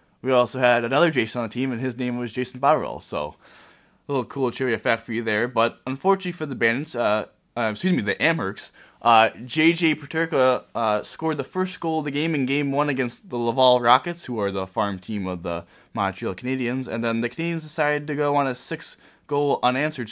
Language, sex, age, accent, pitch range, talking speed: English, male, 20-39, American, 120-150 Hz, 215 wpm